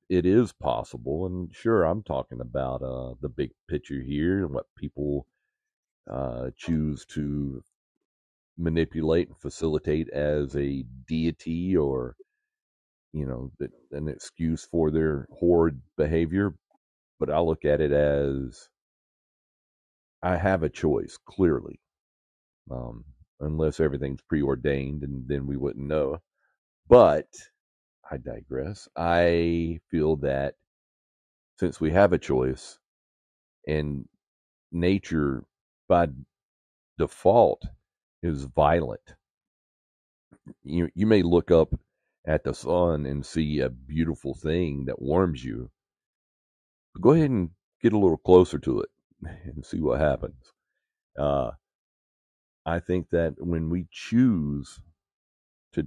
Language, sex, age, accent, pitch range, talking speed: English, male, 40-59, American, 70-85 Hz, 115 wpm